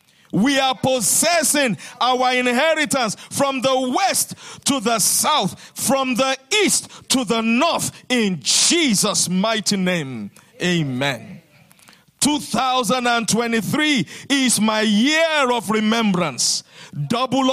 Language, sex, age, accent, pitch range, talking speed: English, male, 50-69, Nigerian, 195-275 Hz, 100 wpm